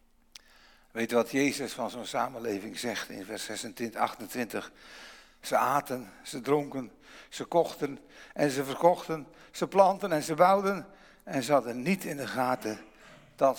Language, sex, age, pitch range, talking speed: English, male, 60-79, 130-185 Hz, 150 wpm